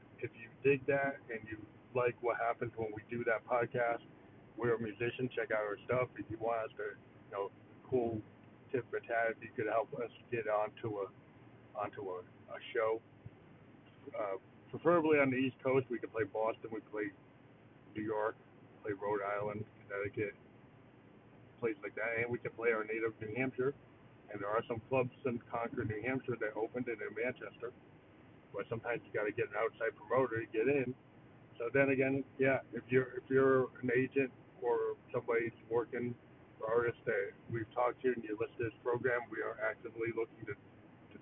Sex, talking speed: male, 190 wpm